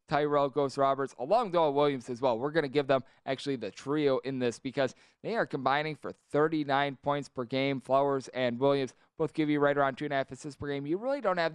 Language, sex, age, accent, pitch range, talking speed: English, male, 20-39, American, 135-175 Hz, 240 wpm